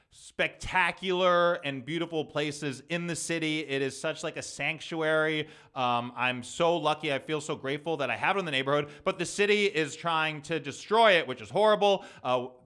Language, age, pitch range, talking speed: English, 20-39, 145-175 Hz, 190 wpm